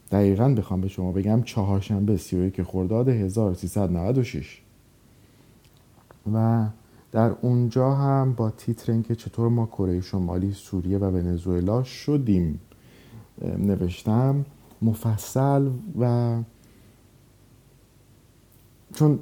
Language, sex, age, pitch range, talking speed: Persian, male, 50-69, 100-125 Hz, 85 wpm